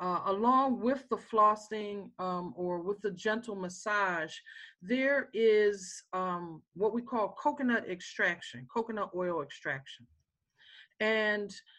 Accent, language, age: American, English, 40-59